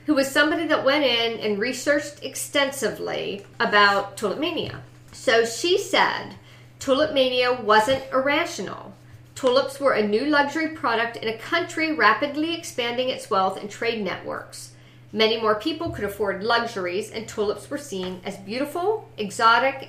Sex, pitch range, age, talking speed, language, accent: female, 200-275 Hz, 50-69, 145 wpm, English, American